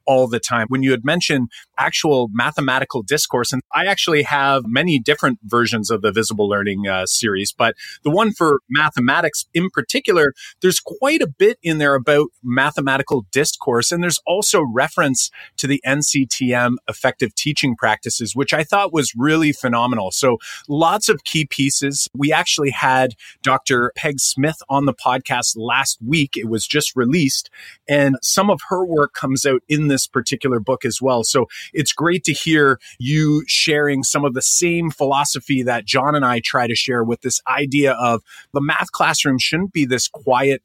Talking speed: 175 wpm